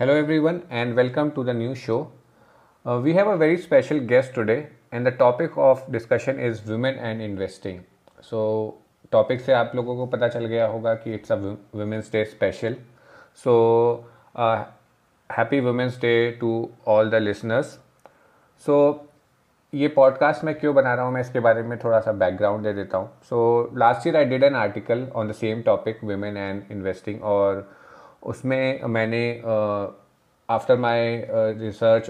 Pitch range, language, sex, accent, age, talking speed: 105-125 Hz, Hindi, male, native, 30-49, 165 wpm